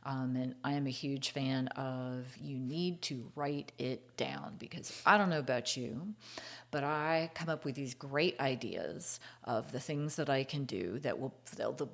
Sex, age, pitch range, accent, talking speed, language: female, 40-59, 130-155 Hz, American, 190 wpm, English